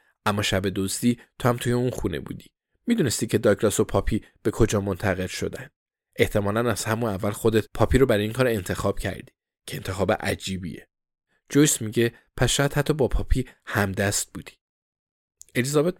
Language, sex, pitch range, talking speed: Persian, male, 100-120 Hz, 160 wpm